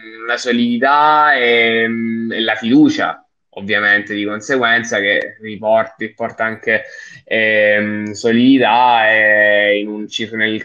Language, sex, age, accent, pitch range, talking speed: Italian, male, 20-39, native, 115-145 Hz, 100 wpm